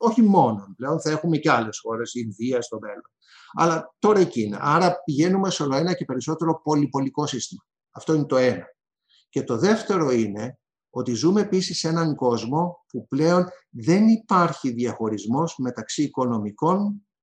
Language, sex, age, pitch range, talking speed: Greek, male, 50-69, 130-180 Hz, 155 wpm